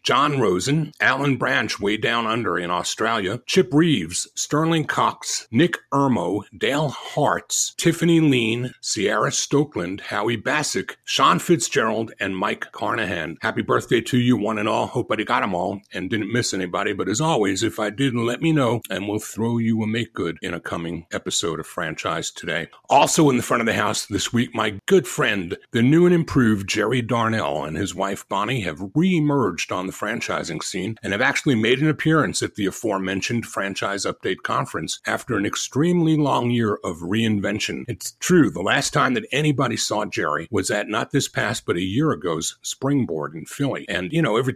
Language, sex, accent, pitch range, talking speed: English, male, American, 105-140 Hz, 185 wpm